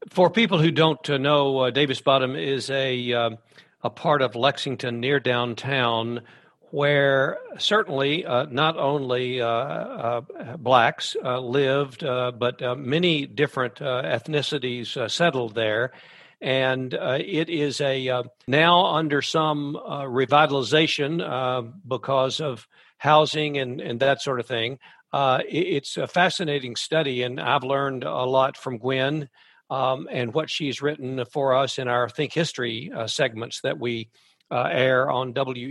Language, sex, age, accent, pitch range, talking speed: English, male, 60-79, American, 130-155 Hz, 150 wpm